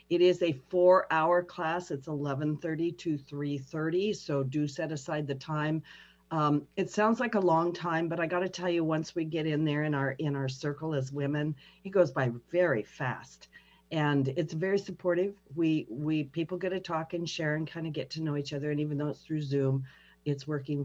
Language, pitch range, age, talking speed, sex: English, 135-165 Hz, 50-69, 210 wpm, female